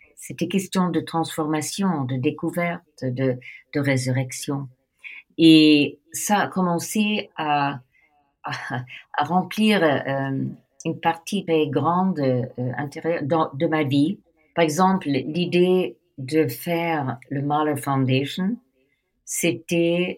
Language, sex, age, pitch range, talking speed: French, female, 50-69, 140-175 Hz, 110 wpm